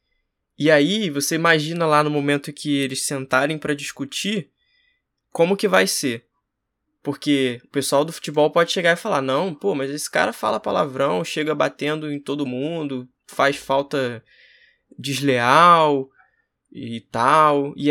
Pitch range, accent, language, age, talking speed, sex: 145-190 Hz, Brazilian, Portuguese, 20-39, 145 wpm, male